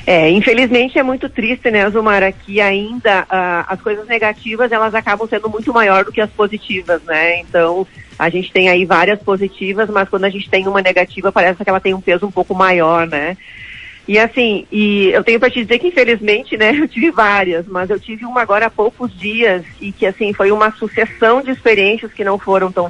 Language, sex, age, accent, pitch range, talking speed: Portuguese, female, 40-59, Brazilian, 185-220 Hz, 210 wpm